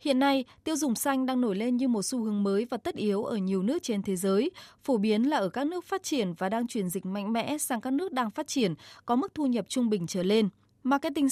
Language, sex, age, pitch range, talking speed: Vietnamese, female, 20-39, 215-275 Hz, 270 wpm